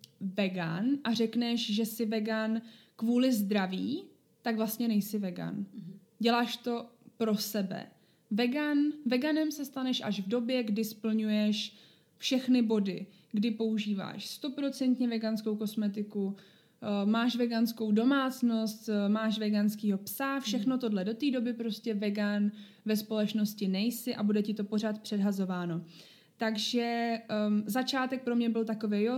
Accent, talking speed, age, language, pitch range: native, 130 wpm, 20-39, Czech, 210-245 Hz